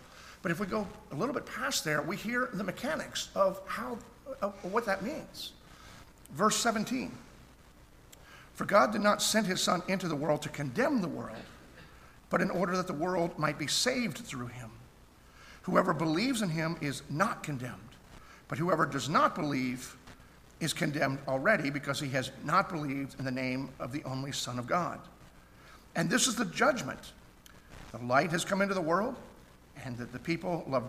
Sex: male